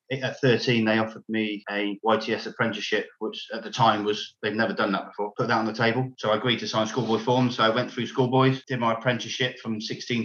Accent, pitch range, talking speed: British, 110-125 Hz, 235 wpm